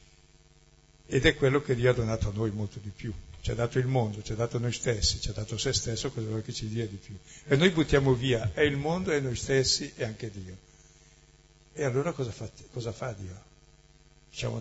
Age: 60-79